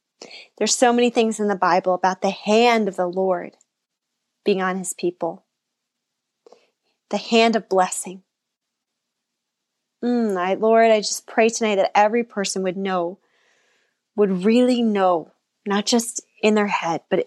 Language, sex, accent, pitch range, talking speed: English, female, American, 185-230 Hz, 145 wpm